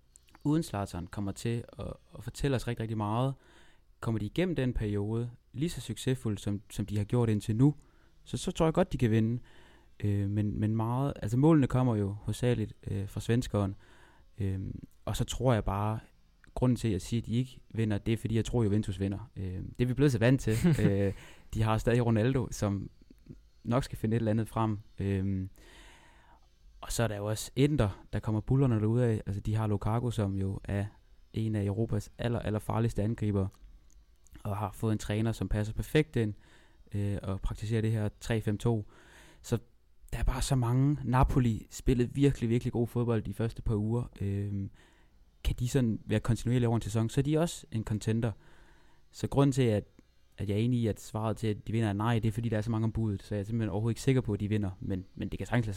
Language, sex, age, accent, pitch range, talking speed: Danish, male, 20-39, native, 100-120 Hz, 220 wpm